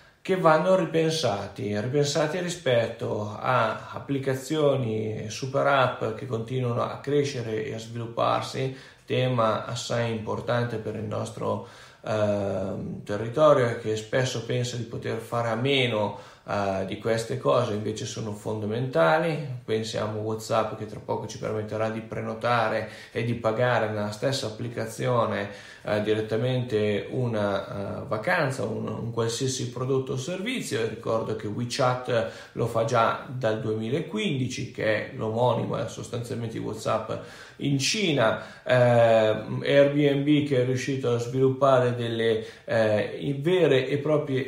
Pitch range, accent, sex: 110-140 Hz, native, male